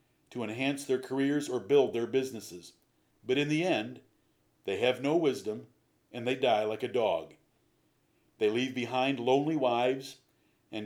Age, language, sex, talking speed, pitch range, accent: 50-69, English, male, 155 wpm, 125-155 Hz, American